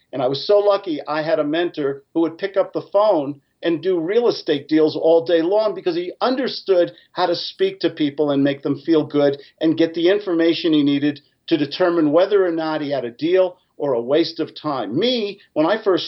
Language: English